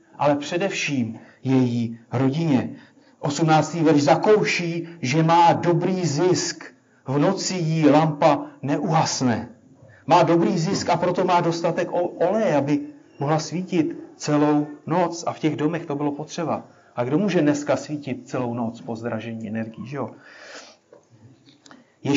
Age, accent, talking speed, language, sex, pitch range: 30-49, native, 135 wpm, Czech, male, 145-180 Hz